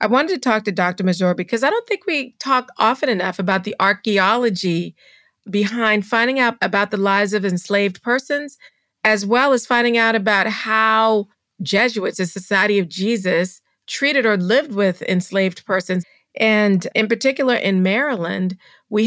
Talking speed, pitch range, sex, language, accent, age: 160 wpm, 190-235 Hz, female, English, American, 40-59